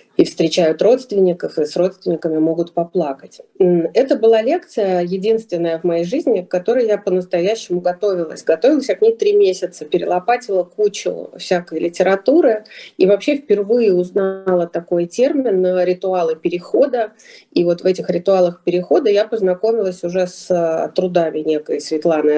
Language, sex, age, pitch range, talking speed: Russian, female, 30-49, 175-225 Hz, 135 wpm